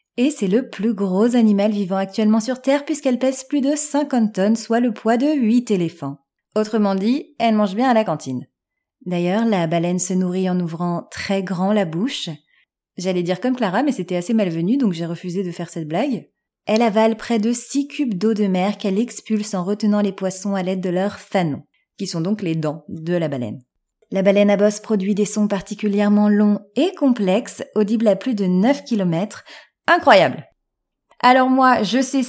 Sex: female